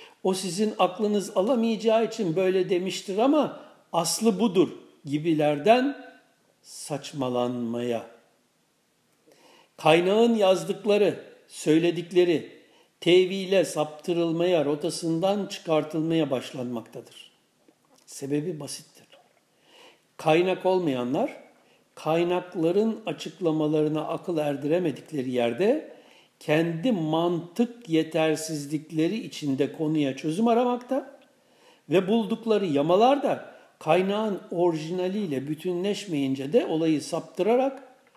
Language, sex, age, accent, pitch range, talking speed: Turkish, male, 60-79, native, 155-210 Hz, 70 wpm